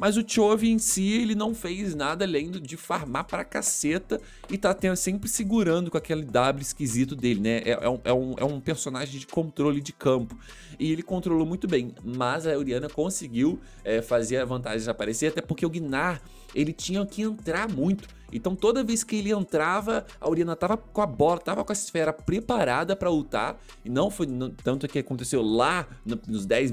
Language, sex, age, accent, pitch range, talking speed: Portuguese, male, 20-39, Brazilian, 130-185 Hz, 200 wpm